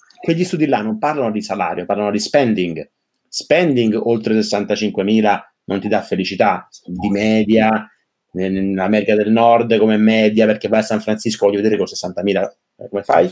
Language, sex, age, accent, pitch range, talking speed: Italian, male, 30-49, native, 105-130 Hz, 165 wpm